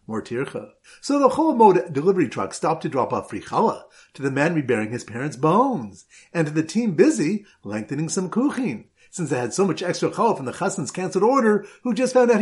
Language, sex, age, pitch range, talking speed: English, male, 50-69, 150-225 Hz, 205 wpm